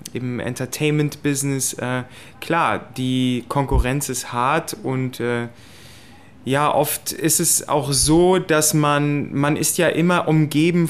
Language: German